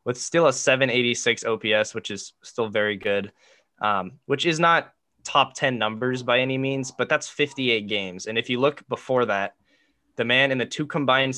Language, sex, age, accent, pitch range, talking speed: English, male, 10-29, American, 110-135 Hz, 190 wpm